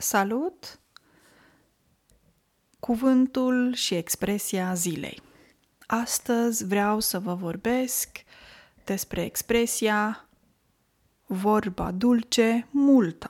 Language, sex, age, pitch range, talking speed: Romanian, female, 20-39, 190-245 Hz, 70 wpm